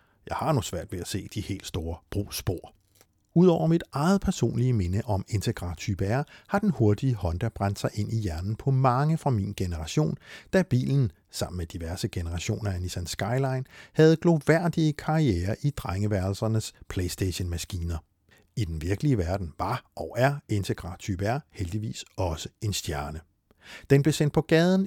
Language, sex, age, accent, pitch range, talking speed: Danish, male, 60-79, native, 95-135 Hz, 155 wpm